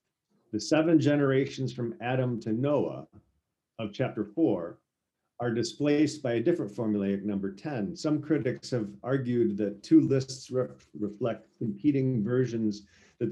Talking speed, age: 130 wpm, 50-69